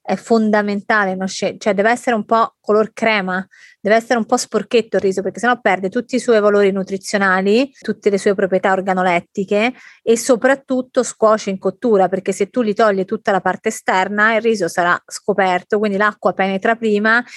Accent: native